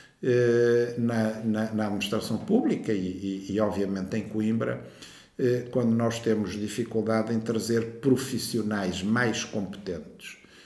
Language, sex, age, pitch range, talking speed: Portuguese, male, 50-69, 100-130 Hz, 120 wpm